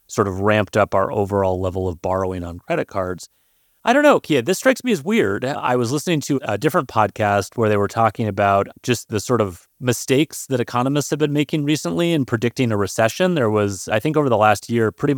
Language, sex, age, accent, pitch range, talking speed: English, male, 30-49, American, 100-125 Hz, 225 wpm